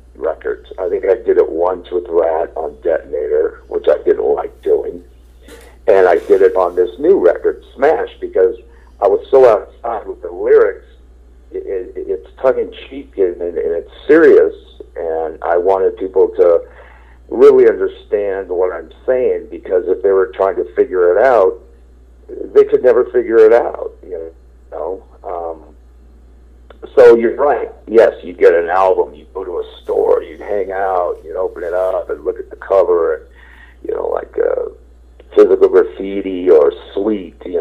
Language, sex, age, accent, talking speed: English, male, 50-69, American, 160 wpm